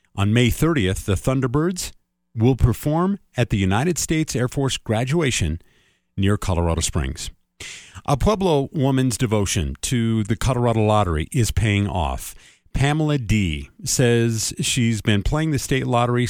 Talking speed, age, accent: 135 wpm, 40-59, American